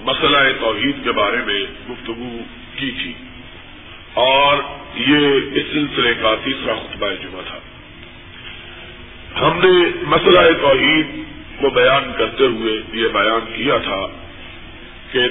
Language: Urdu